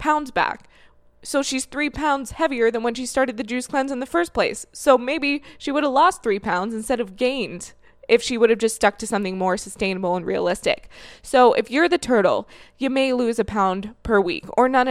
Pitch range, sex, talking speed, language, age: 195-255 Hz, female, 220 wpm, English, 20-39